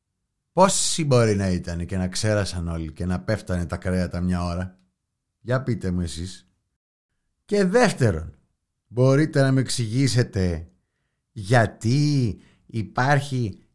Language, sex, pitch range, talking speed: Greek, male, 100-145 Hz, 120 wpm